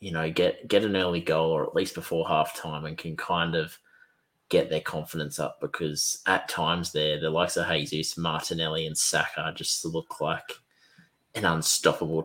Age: 20-39